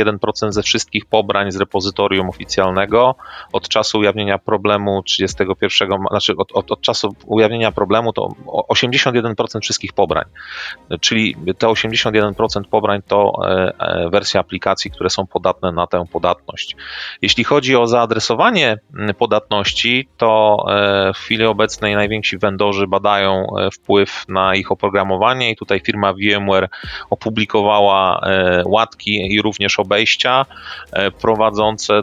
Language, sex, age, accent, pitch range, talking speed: Polish, male, 30-49, native, 95-110 Hz, 120 wpm